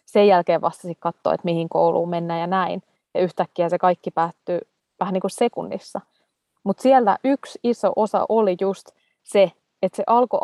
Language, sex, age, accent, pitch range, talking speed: Finnish, female, 20-39, native, 175-215 Hz, 170 wpm